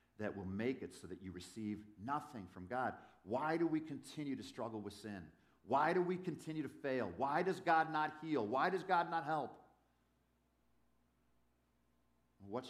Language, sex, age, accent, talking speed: English, male, 50-69, American, 170 wpm